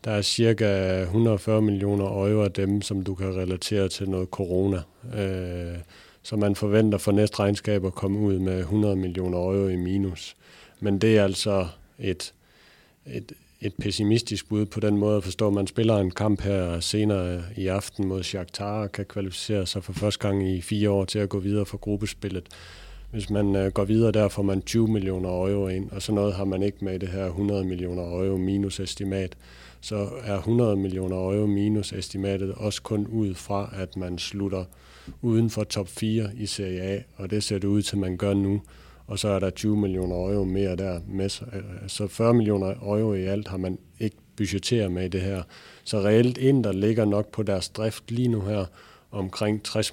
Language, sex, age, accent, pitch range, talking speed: Danish, male, 40-59, native, 95-105 Hz, 190 wpm